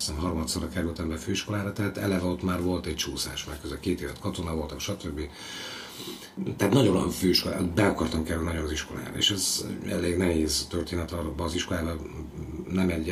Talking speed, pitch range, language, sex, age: 185 wpm, 80-100 Hz, Hungarian, male, 50-69